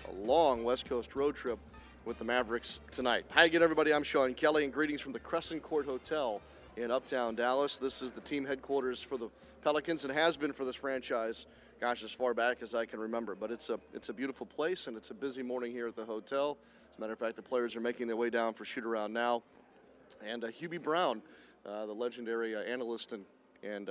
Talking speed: 225 wpm